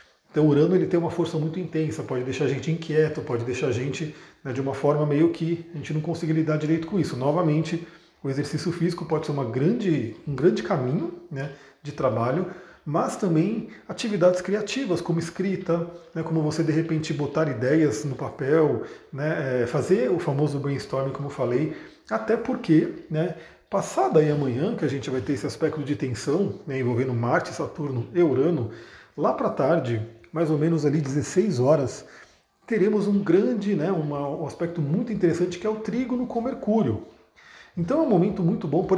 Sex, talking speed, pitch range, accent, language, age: male, 185 wpm, 140-175 Hz, Brazilian, Portuguese, 40-59